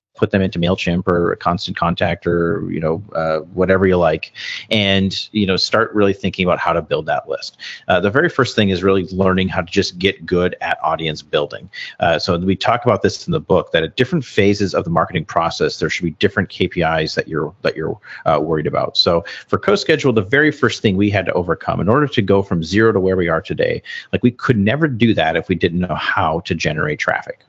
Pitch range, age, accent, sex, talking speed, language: 85-110 Hz, 40-59, American, male, 235 wpm, English